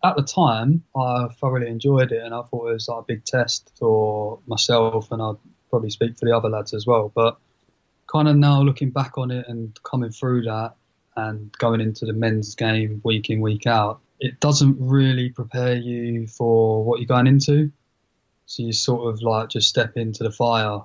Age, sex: 20-39, male